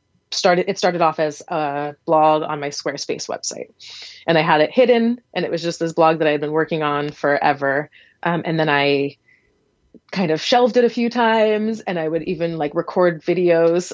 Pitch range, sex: 150-180 Hz, female